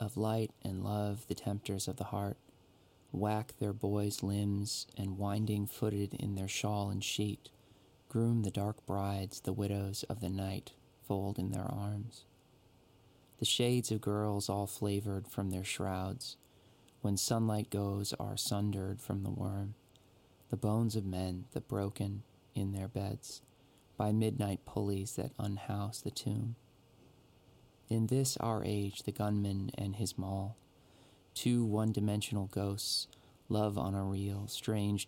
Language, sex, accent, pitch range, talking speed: English, male, American, 100-115 Hz, 145 wpm